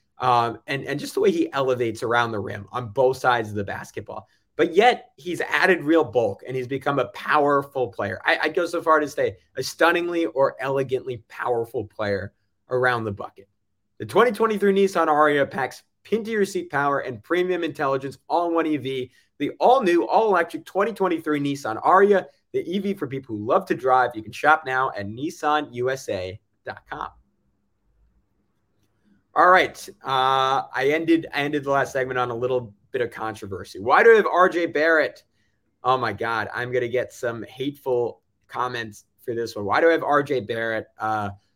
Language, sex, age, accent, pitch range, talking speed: English, male, 30-49, American, 120-160 Hz, 180 wpm